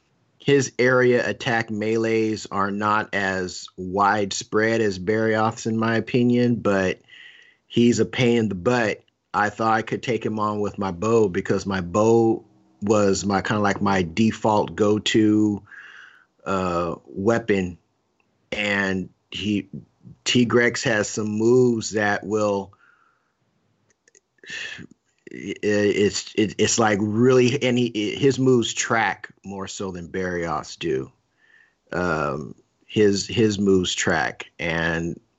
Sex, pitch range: male, 95-110 Hz